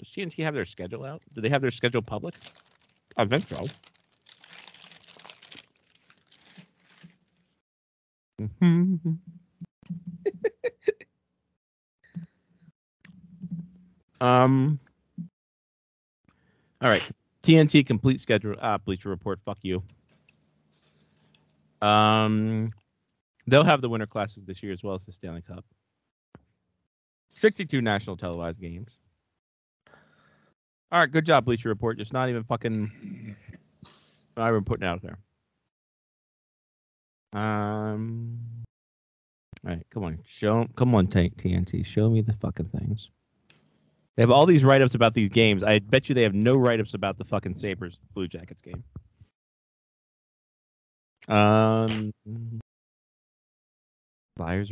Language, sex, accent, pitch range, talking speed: English, male, American, 100-130 Hz, 105 wpm